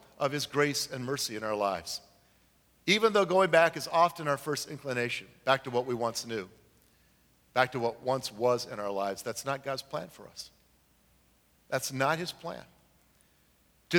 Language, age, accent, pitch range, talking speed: English, 50-69, American, 130-200 Hz, 180 wpm